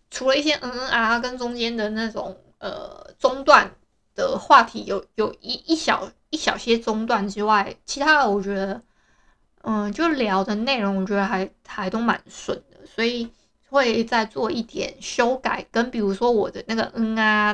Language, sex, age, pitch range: Chinese, female, 20-39, 220-280 Hz